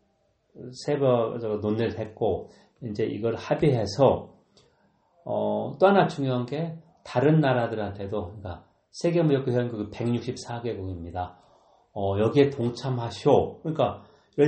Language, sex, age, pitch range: Korean, male, 40-59, 100-140 Hz